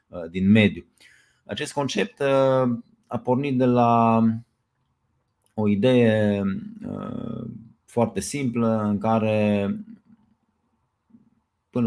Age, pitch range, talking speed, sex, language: 20-39, 100-120 Hz, 75 wpm, male, Romanian